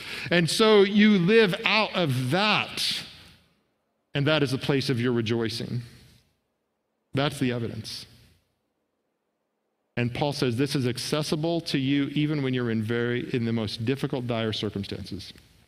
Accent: American